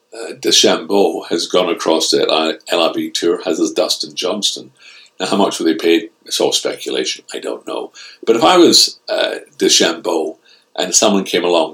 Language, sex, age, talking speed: English, male, 60-79, 175 wpm